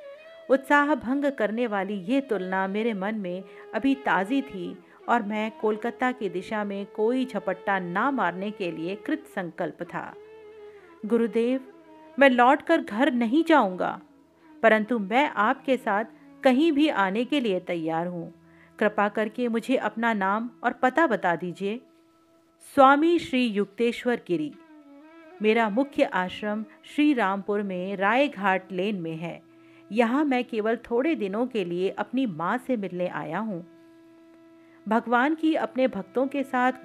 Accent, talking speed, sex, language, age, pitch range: native, 140 wpm, female, Hindi, 50-69, 200-280 Hz